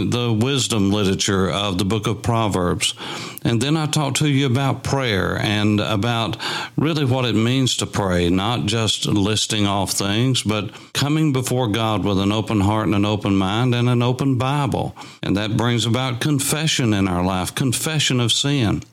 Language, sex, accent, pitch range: English, male, American, 100-130 Hz